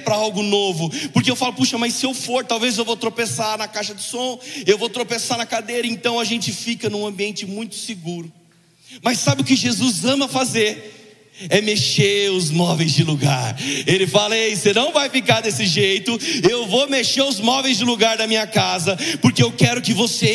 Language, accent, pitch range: Portuguese, Brazilian, 170-245 Hz